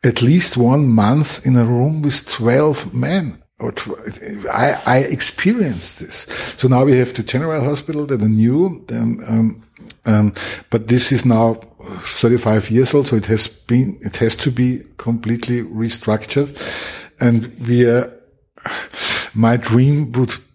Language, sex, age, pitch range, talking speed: English, male, 50-69, 115-130 Hz, 145 wpm